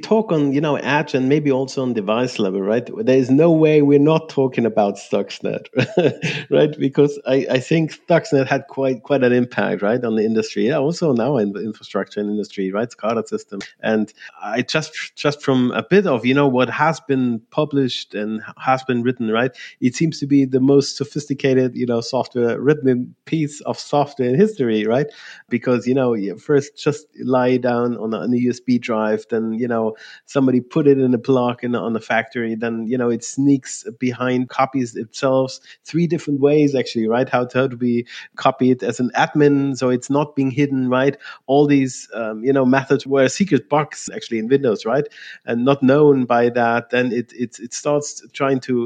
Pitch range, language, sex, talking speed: 120-140 Hz, English, male, 195 wpm